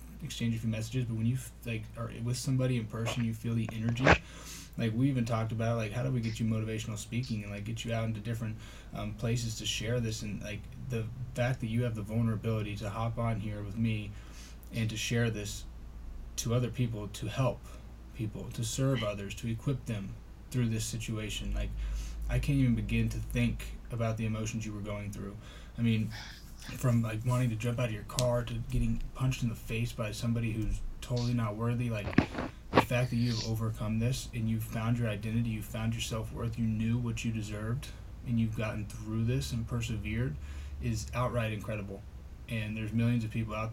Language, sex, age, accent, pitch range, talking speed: English, male, 20-39, American, 110-120 Hz, 205 wpm